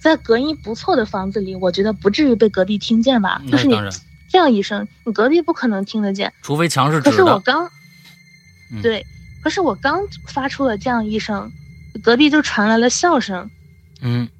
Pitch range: 195-300 Hz